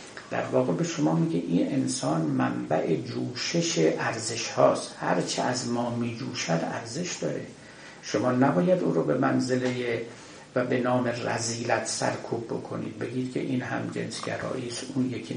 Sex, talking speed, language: male, 140 wpm, Persian